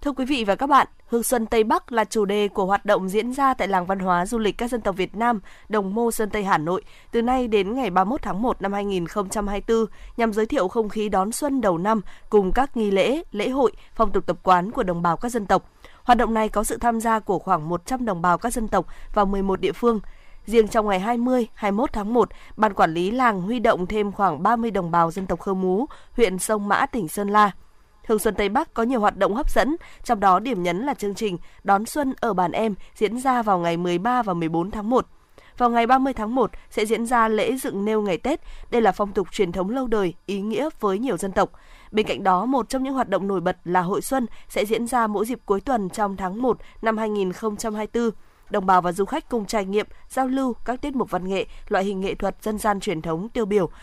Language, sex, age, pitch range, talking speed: Vietnamese, female, 20-39, 195-240 Hz, 250 wpm